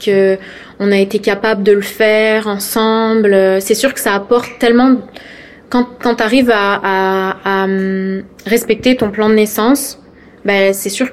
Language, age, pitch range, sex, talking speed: French, 20-39, 205-235 Hz, female, 160 wpm